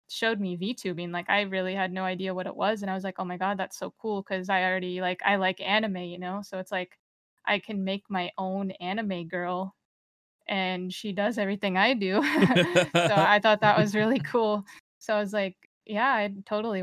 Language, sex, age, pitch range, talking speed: English, female, 20-39, 190-210 Hz, 220 wpm